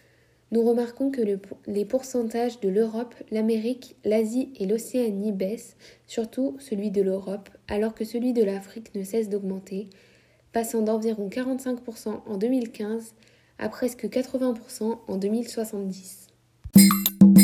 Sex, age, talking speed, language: female, 20-39, 115 wpm, French